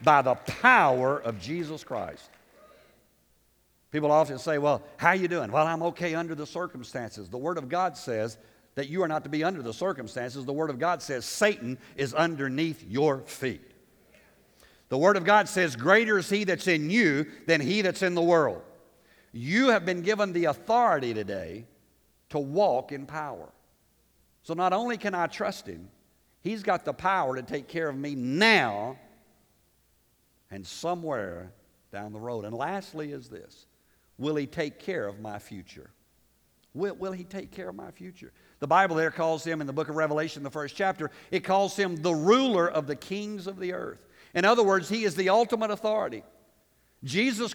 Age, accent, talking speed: 60-79, American, 185 wpm